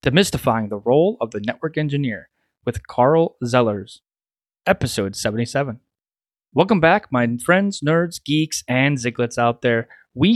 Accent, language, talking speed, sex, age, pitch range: American, English, 135 wpm, male, 30-49, 125-165 Hz